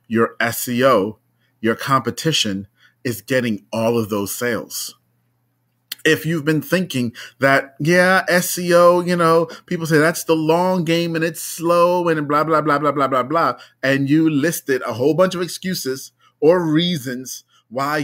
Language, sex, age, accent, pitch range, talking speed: English, male, 30-49, American, 120-160 Hz, 155 wpm